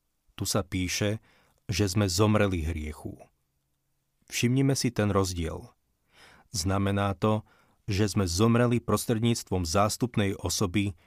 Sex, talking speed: male, 105 wpm